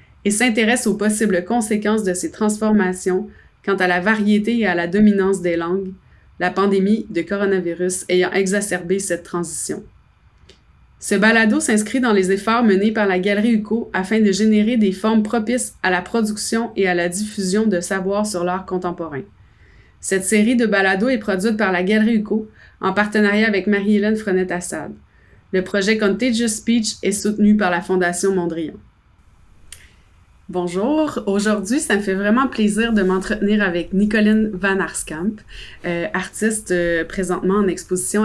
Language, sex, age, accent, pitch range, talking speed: French, female, 30-49, Canadian, 180-215 Hz, 155 wpm